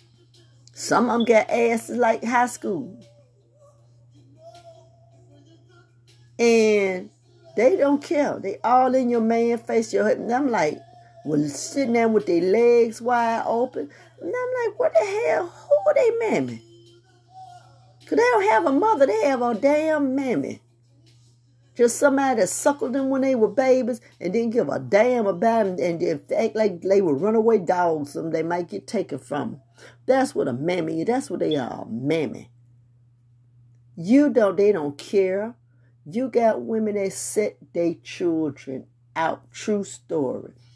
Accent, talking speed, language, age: American, 155 wpm, English, 40-59